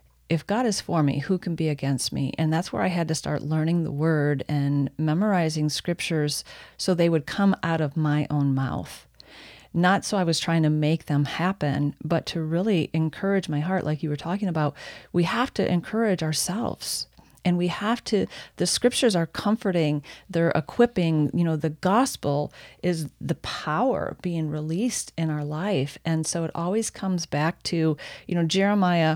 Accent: American